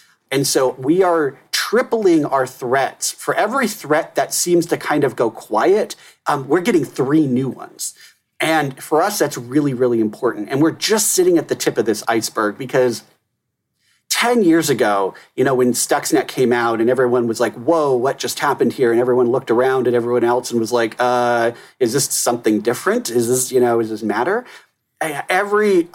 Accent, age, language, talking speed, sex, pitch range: American, 40-59, English, 190 wpm, male, 120-155 Hz